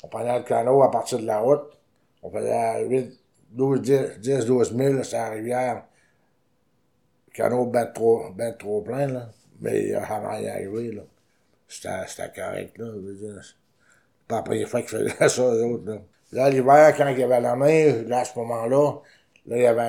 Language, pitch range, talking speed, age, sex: French, 115-135 Hz, 190 wpm, 60-79, male